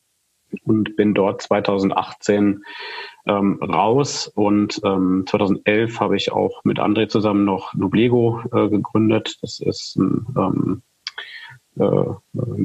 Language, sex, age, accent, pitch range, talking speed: German, male, 40-59, German, 100-115 Hz, 110 wpm